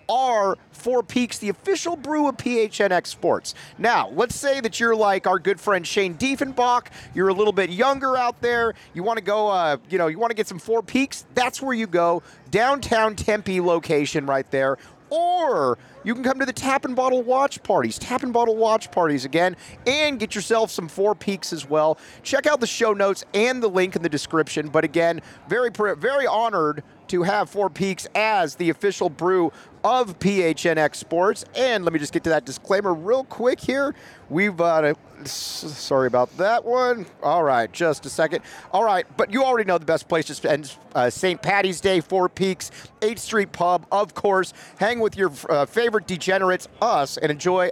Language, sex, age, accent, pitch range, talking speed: English, male, 30-49, American, 170-245 Hz, 190 wpm